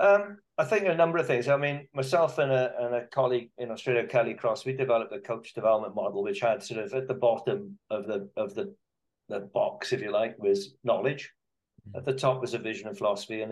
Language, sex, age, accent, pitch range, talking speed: English, male, 50-69, British, 110-135 Hz, 230 wpm